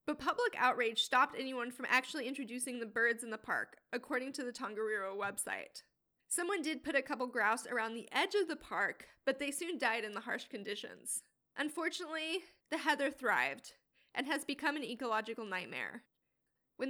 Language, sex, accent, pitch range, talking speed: English, female, American, 245-325 Hz, 175 wpm